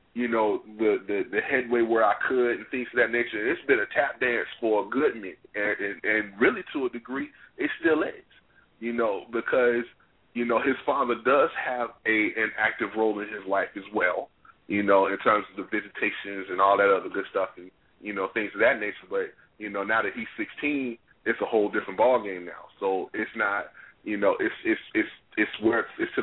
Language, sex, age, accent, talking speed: English, male, 30-49, American, 225 wpm